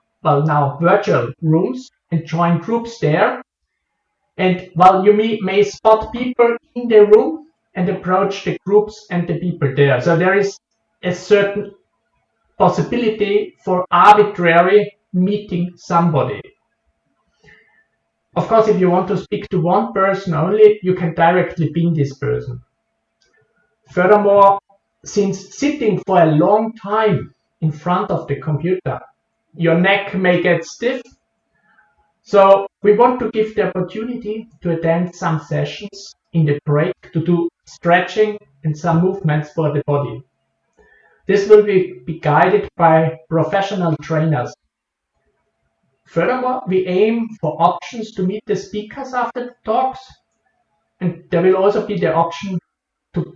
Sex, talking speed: male, 135 wpm